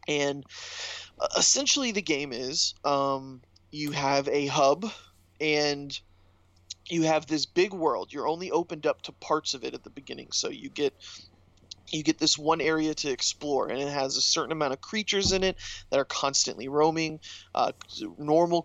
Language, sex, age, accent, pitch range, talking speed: English, male, 20-39, American, 130-160 Hz, 170 wpm